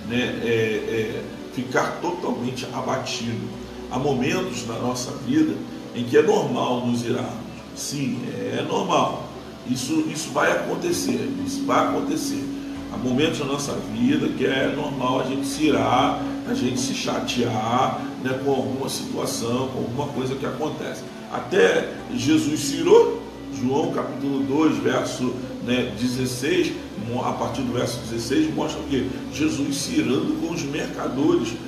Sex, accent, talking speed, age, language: male, Brazilian, 140 wpm, 40-59, Portuguese